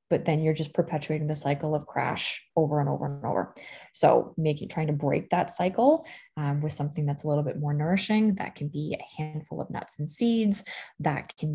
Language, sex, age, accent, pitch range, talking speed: English, female, 20-39, American, 150-185 Hz, 215 wpm